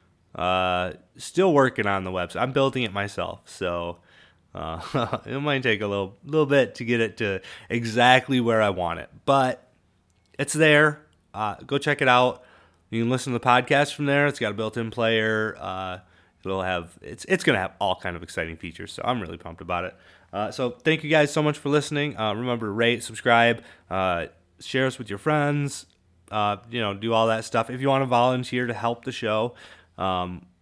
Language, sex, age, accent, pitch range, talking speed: English, male, 30-49, American, 95-130 Hz, 205 wpm